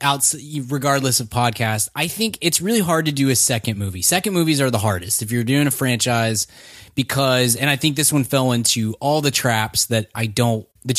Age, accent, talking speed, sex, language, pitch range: 20-39, American, 215 wpm, male, English, 110-140 Hz